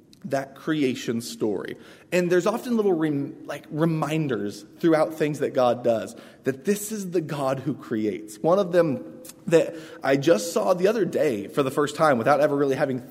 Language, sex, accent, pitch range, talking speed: English, male, American, 125-170 Hz, 185 wpm